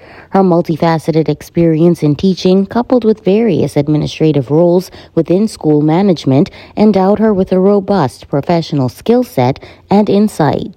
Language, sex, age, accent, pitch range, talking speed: English, female, 30-49, American, 155-195 Hz, 130 wpm